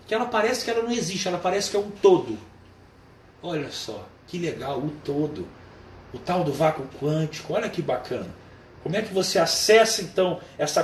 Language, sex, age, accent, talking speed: Portuguese, male, 40-59, Brazilian, 185 wpm